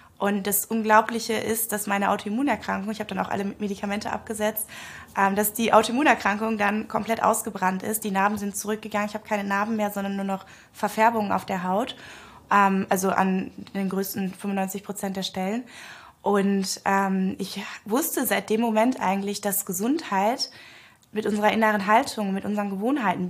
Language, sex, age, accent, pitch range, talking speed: German, female, 20-39, German, 195-225 Hz, 155 wpm